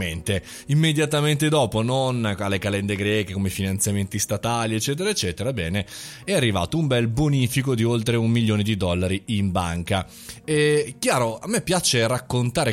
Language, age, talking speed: Italian, 20-39, 145 wpm